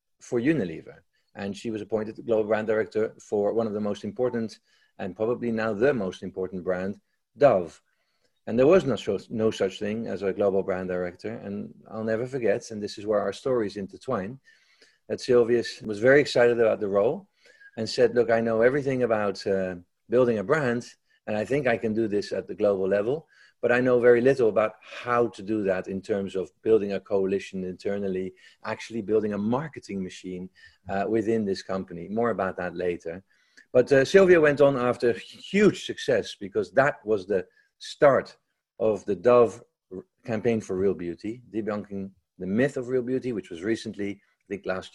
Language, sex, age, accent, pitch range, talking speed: English, male, 40-59, Dutch, 95-120 Hz, 185 wpm